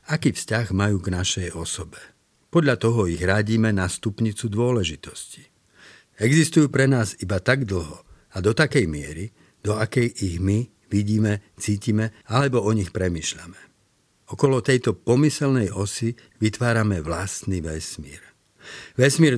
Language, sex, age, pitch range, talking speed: Slovak, male, 60-79, 95-115 Hz, 125 wpm